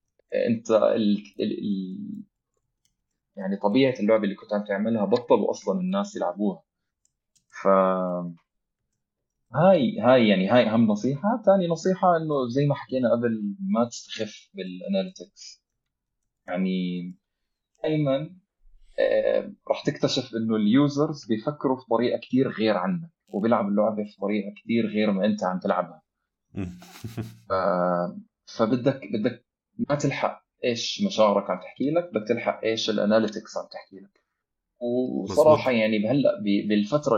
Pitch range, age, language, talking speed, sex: 105-150 Hz, 20-39, Arabic, 120 wpm, male